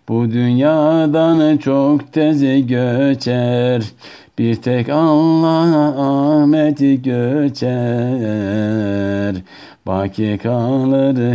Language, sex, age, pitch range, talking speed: Turkish, male, 60-79, 110-150 Hz, 60 wpm